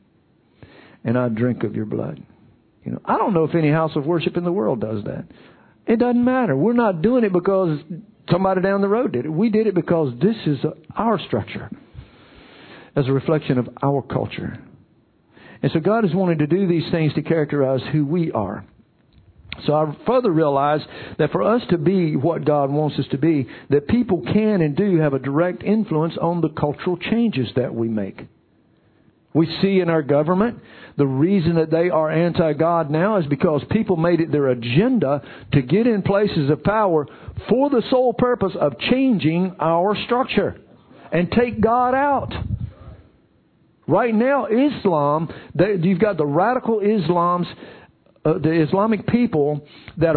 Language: English